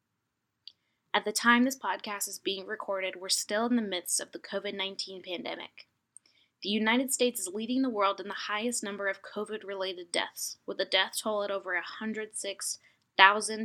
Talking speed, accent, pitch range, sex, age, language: 165 wpm, American, 185-220 Hz, female, 10-29, English